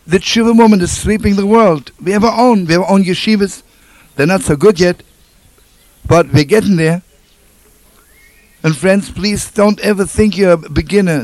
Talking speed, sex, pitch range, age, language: 180 wpm, male, 150-205 Hz, 60-79, English